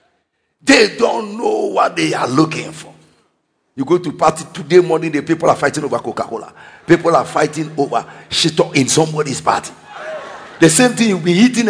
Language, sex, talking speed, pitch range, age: English, male, 175 wpm, 190-310 Hz, 50-69